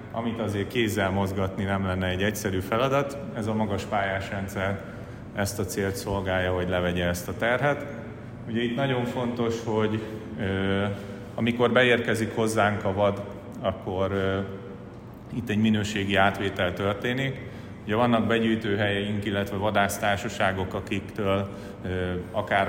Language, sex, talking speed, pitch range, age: Hungarian, male, 120 wpm, 95-110 Hz, 30-49